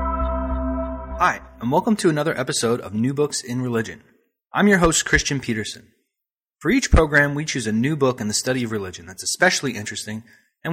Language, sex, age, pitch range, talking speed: English, male, 30-49, 115-145 Hz, 185 wpm